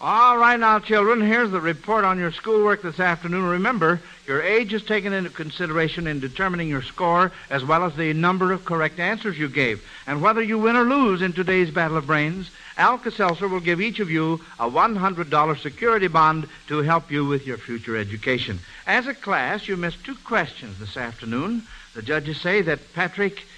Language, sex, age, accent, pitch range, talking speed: English, male, 60-79, American, 145-195 Hz, 195 wpm